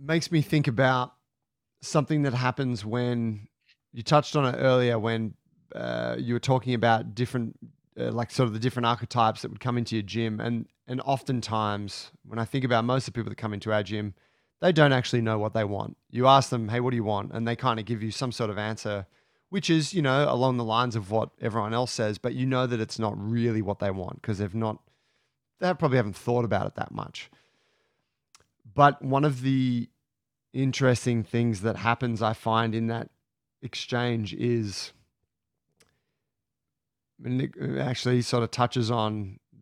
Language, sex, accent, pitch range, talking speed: English, male, Australian, 110-130 Hz, 190 wpm